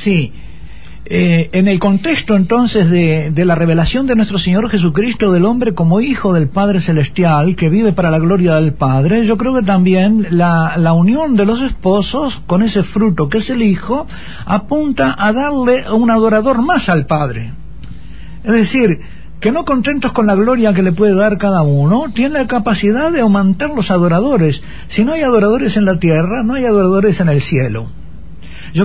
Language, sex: Spanish, male